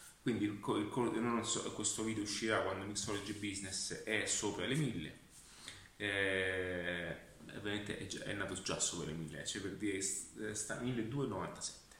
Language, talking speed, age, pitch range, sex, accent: Italian, 160 wpm, 30-49, 105-130 Hz, male, native